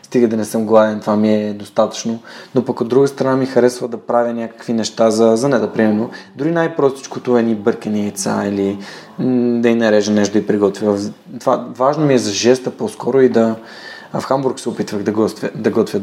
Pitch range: 110-120 Hz